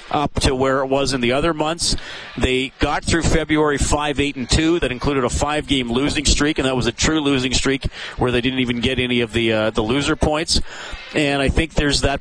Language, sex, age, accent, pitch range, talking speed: English, male, 40-59, American, 130-150 Hz, 230 wpm